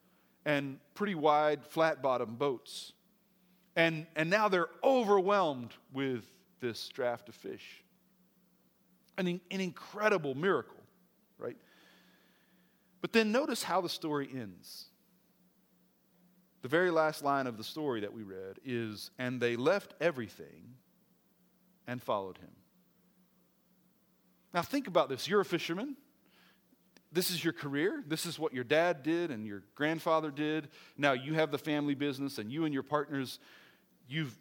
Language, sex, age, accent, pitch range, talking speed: English, male, 40-59, American, 140-185 Hz, 140 wpm